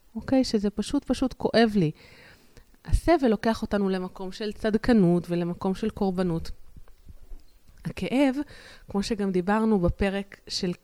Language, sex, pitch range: Hebrew, female, 180-240 Hz